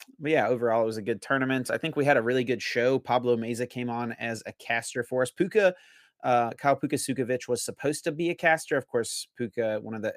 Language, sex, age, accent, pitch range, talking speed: English, male, 30-49, American, 115-140 Hz, 240 wpm